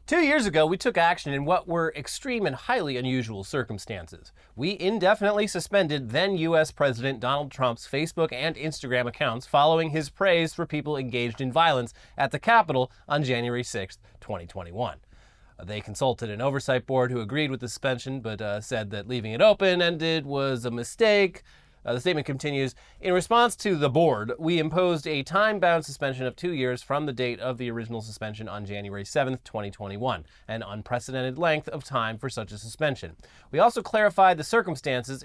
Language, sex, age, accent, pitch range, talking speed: English, male, 30-49, American, 120-160 Hz, 175 wpm